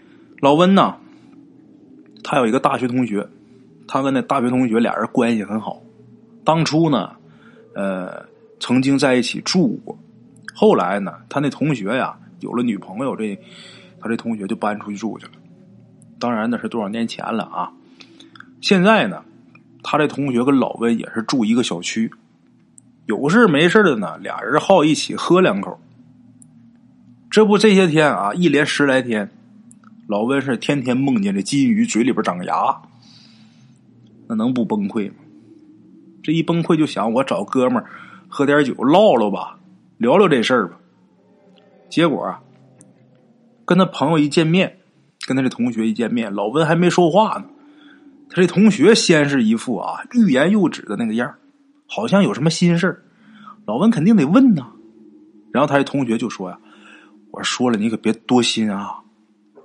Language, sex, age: Chinese, male, 20-39